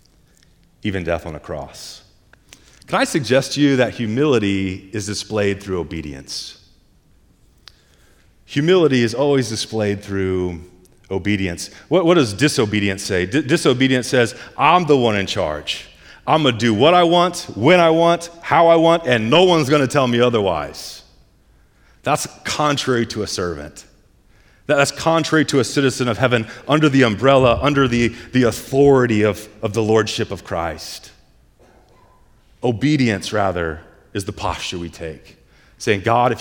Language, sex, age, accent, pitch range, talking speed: English, male, 30-49, American, 105-145 Hz, 150 wpm